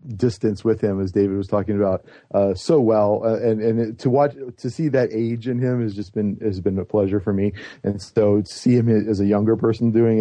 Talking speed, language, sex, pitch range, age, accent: 240 wpm, English, male, 105-125 Hz, 40-59, American